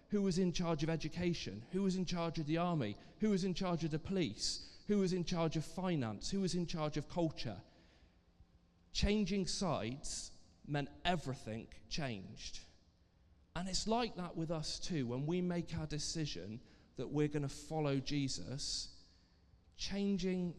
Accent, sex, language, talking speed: British, male, English, 160 wpm